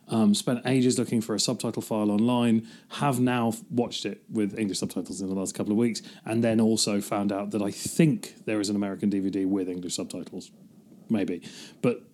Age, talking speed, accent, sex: 30-49, 205 wpm, British, male